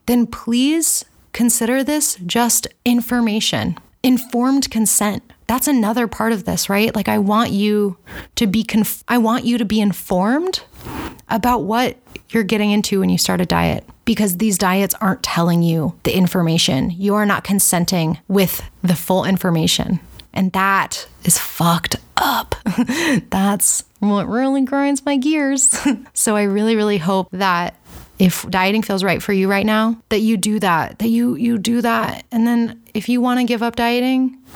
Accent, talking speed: American, 165 wpm